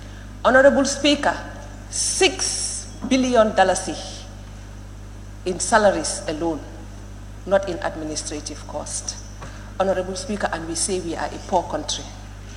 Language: English